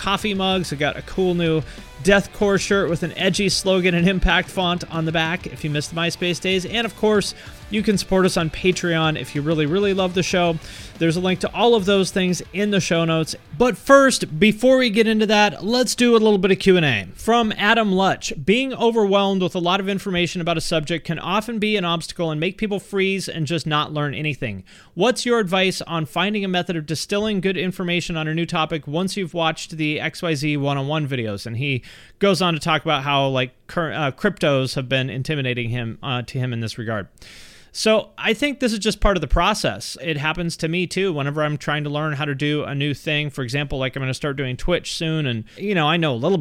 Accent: American